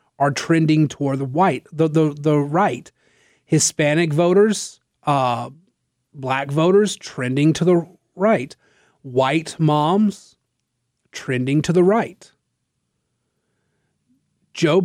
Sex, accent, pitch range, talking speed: male, American, 140-180 Hz, 100 wpm